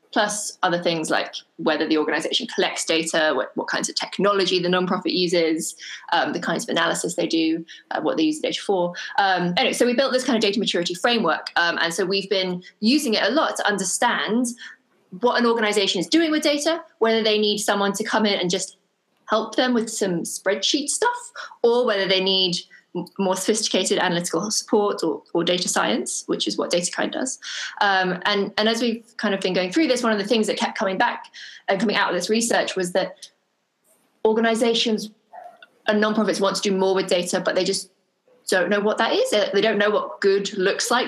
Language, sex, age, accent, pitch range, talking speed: English, female, 20-39, British, 190-235 Hz, 205 wpm